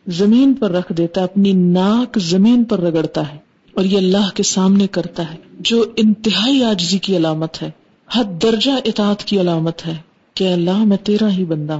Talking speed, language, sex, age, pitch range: 180 wpm, Urdu, female, 40-59, 180-220 Hz